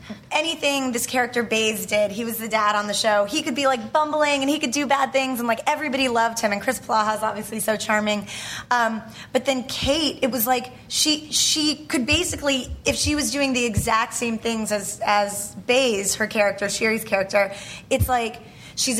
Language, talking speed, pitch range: English, 200 wpm, 205-245 Hz